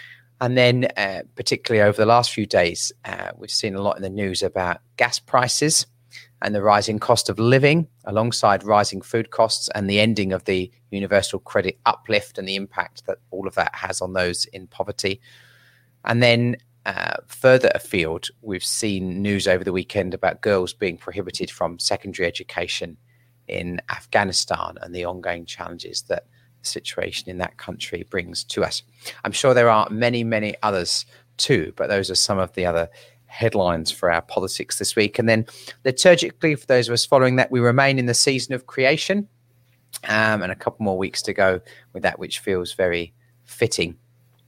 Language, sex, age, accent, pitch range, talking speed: English, male, 30-49, British, 100-125 Hz, 180 wpm